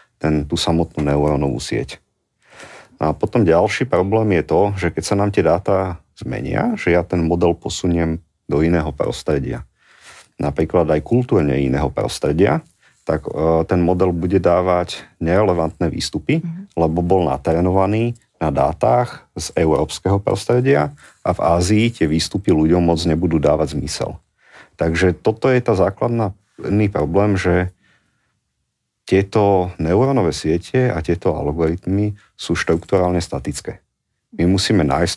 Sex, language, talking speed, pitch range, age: male, Slovak, 125 wpm, 80-100 Hz, 40-59